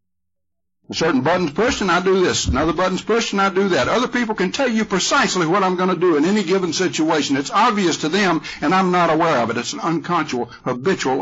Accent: American